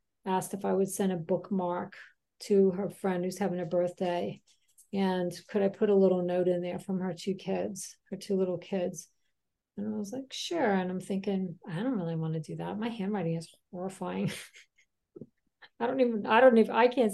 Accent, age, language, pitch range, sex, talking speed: American, 50-69, English, 185-215 Hz, female, 205 wpm